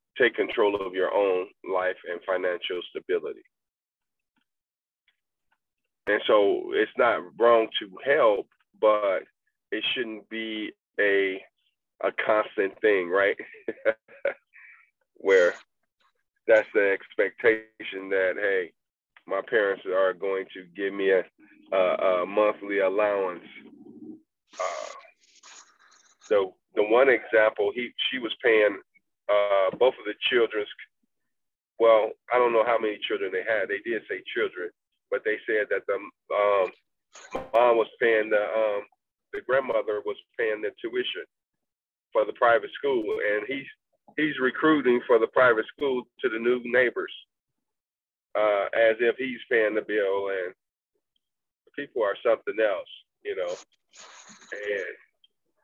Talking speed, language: 130 wpm, English